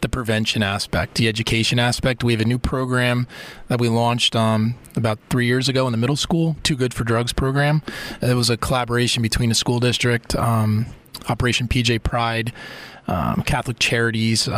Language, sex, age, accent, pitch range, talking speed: English, male, 20-39, American, 115-130 Hz, 175 wpm